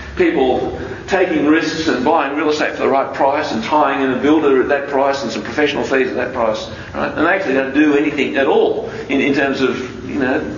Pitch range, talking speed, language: 100-155 Hz, 235 wpm, English